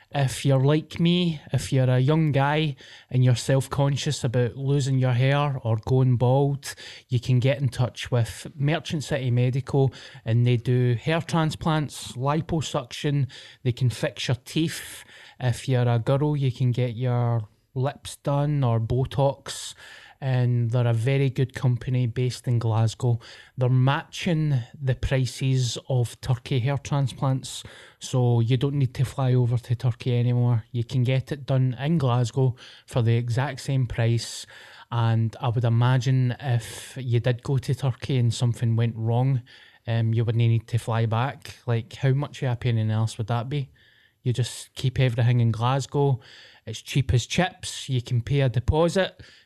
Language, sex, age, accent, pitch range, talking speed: English, male, 20-39, British, 120-140 Hz, 165 wpm